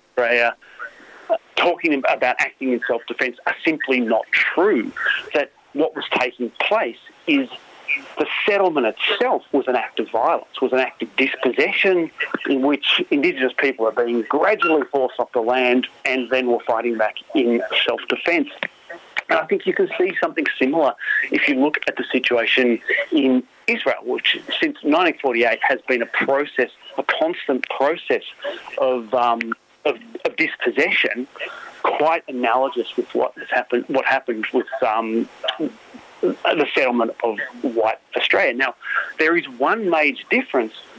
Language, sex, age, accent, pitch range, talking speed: English, male, 40-59, Australian, 120-200 Hz, 145 wpm